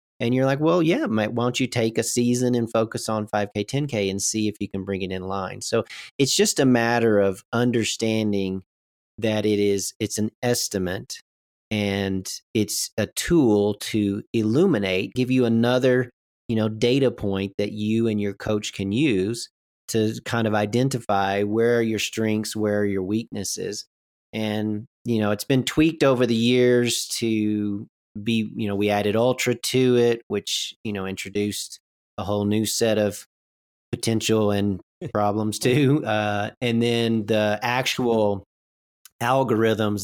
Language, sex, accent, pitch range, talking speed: English, male, American, 100-120 Hz, 160 wpm